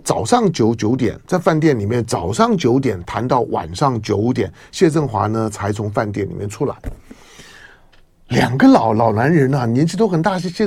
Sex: male